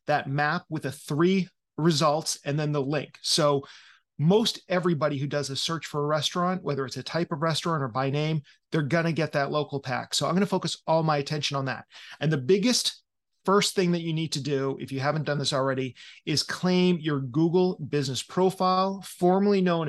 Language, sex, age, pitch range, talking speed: English, male, 30-49, 145-180 Hz, 205 wpm